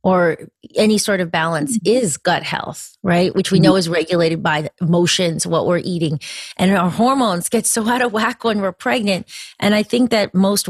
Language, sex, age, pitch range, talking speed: English, female, 30-49, 175-205 Hz, 195 wpm